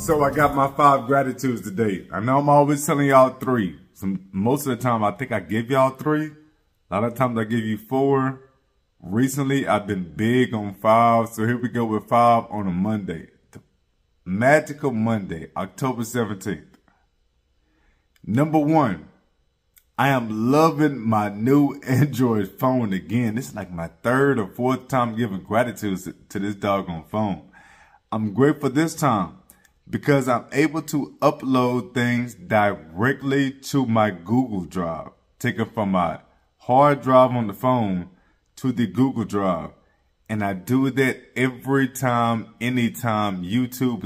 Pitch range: 105-135 Hz